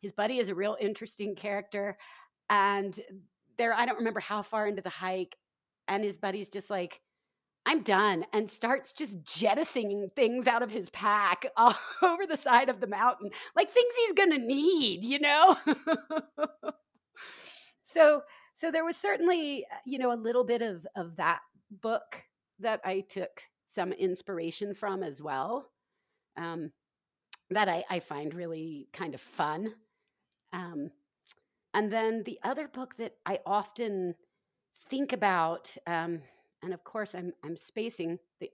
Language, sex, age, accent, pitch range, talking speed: English, female, 40-59, American, 180-240 Hz, 150 wpm